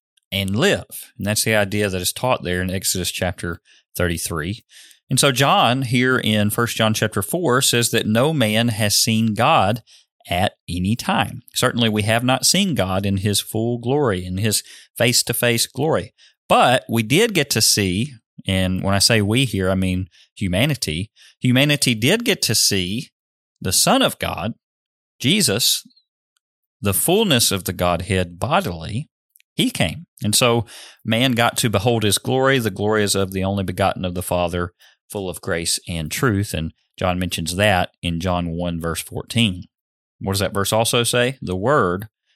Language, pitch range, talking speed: English, 95-120 Hz, 175 wpm